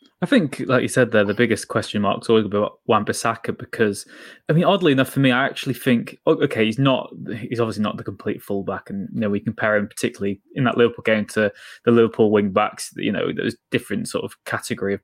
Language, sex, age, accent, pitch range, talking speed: English, male, 20-39, British, 110-130 Hz, 230 wpm